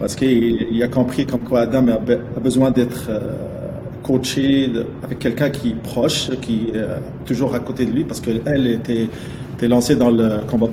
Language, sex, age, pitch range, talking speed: French, male, 40-59, 120-140 Hz, 175 wpm